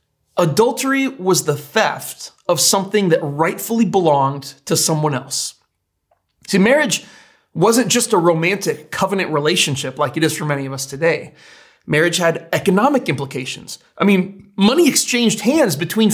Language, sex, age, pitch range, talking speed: English, male, 30-49, 150-225 Hz, 140 wpm